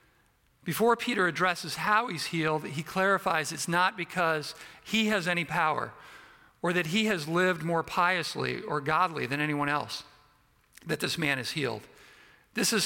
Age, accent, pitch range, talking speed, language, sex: 50-69, American, 155-190 Hz, 160 wpm, English, male